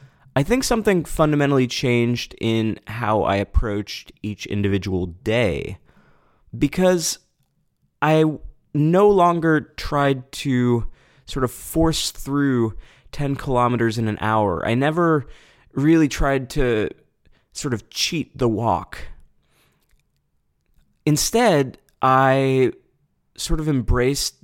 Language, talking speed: English, 105 wpm